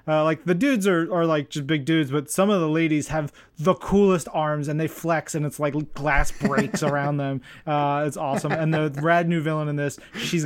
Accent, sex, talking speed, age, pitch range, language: American, male, 230 wpm, 30-49, 145-180 Hz, English